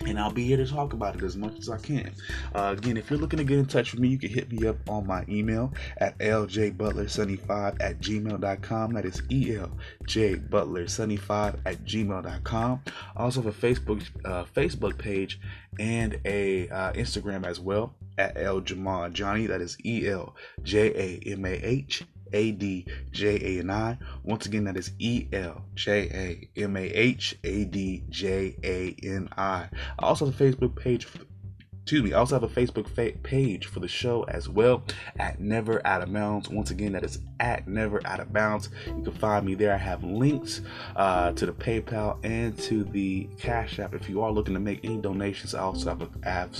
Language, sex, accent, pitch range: English, male, American, 95-115 Hz